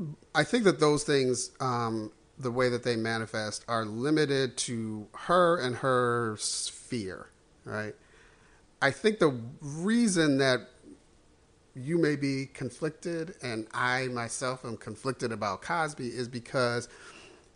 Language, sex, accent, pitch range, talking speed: English, male, American, 115-140 Hz, 125 wpm